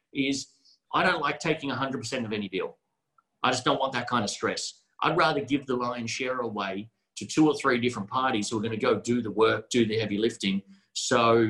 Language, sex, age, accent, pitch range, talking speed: English, male, 40-59, Australian, 115-155 Hz, 225 wpm